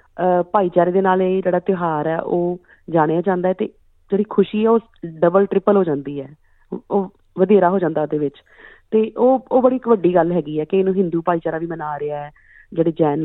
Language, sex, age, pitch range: Punjabi, female, 30-49, 150-185 Hz